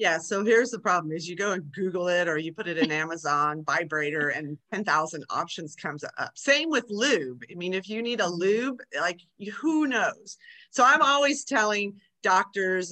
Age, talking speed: 30-49, 190 wpm